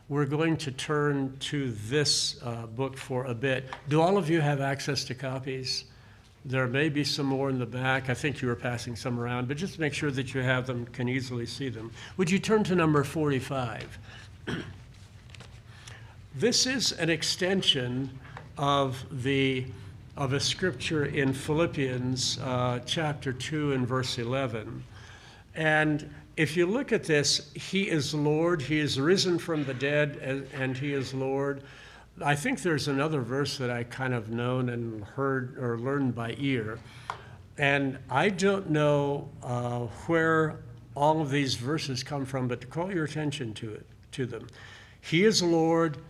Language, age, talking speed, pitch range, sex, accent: English, 60-79, 165 wpm, 125-155 Hz, male, American